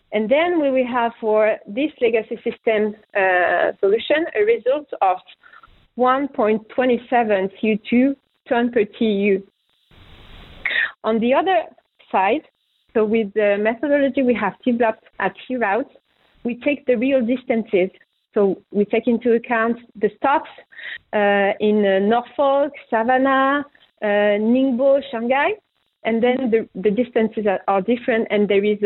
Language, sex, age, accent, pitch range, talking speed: German, female, 40-59, French, 210-255 Hz, 135 wpm